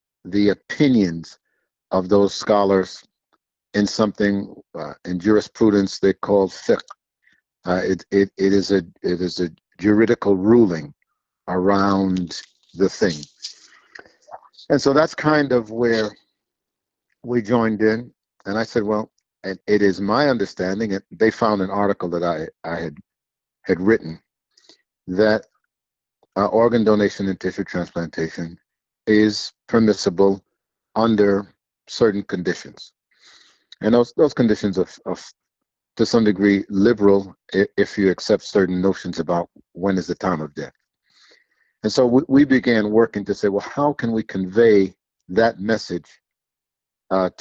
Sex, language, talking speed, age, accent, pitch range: male, English, 135 wpm, 50-69, American, 90-110 Hz